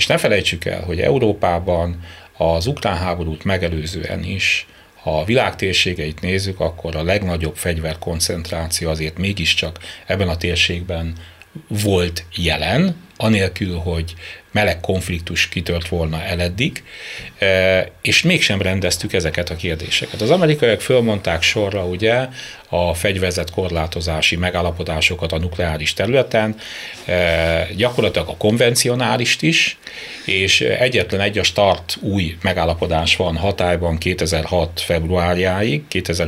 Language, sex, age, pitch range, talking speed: Hungarian, male, 30-49, 85-100 Hz, 110 wpm